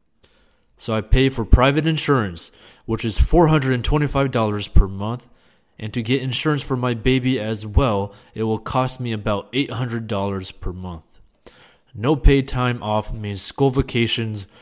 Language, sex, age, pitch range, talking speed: English, male, 20-39, 100-125 Hz, 145 wpm